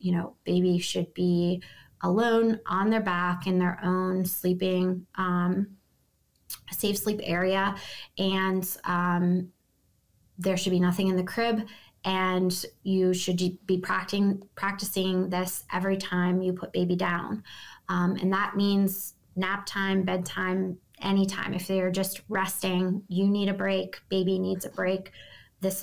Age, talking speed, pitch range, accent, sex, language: 20-39, 140 wpm, 180-195 Hz, American, female, English